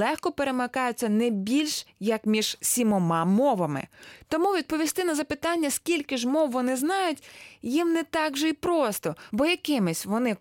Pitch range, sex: 195-270 Hz, female